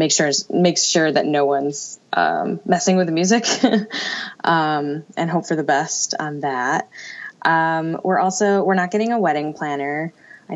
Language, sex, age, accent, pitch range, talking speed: English, female, 10-29, American, 150-200 Hz, 170 wpm